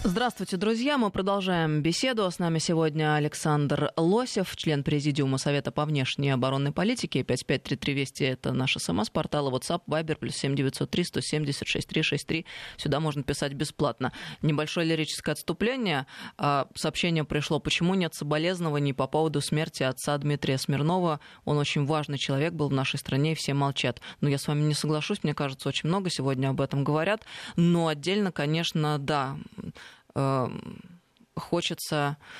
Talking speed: 135 wpm